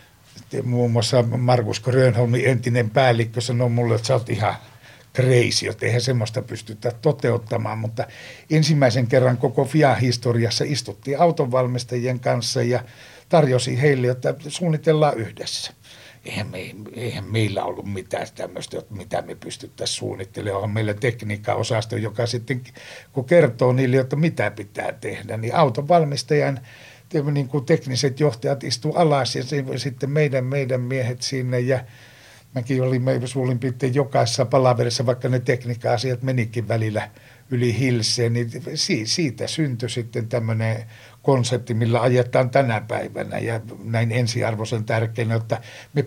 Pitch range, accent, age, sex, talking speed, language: 120-135 Hz, native, 60-79, male, 130 wpm, Finnish